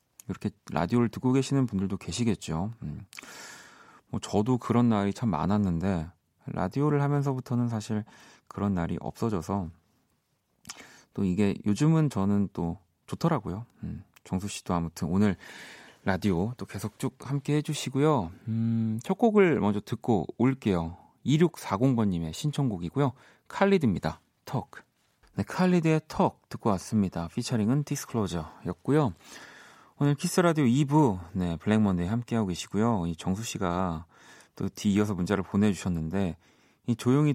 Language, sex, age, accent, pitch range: Korean, male, 40-59, native, 95-125 Hz